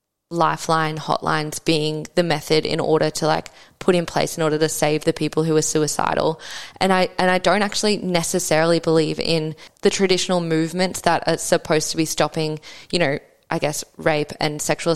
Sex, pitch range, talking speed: female, 160-185 Hz, 185 wpm